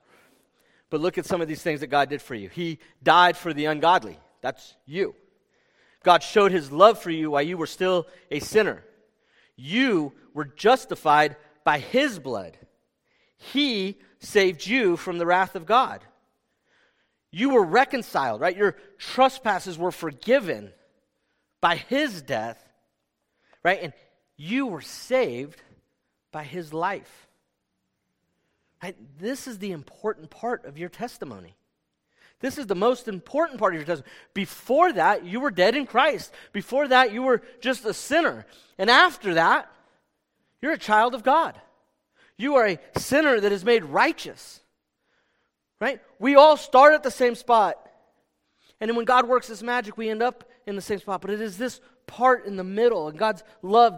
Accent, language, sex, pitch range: American, English, male, 180-250 Hz